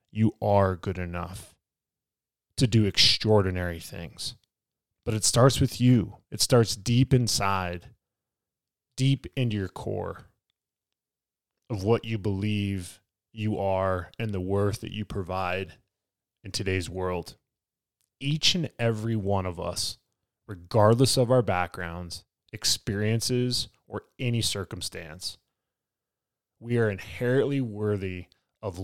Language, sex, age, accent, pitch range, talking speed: English, male, 20-39, American, 95-115 Hz, 115 wpm